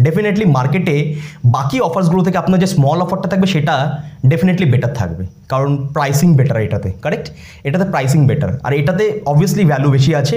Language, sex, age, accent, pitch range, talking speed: Bengali, male, 20-39, native, 140-185 Hz, 160 wpm